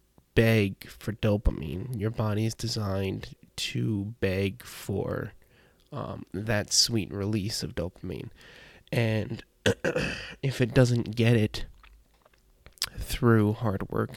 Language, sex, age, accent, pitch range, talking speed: English, male, 20-39, American, 100-115 Hz, 105 wpm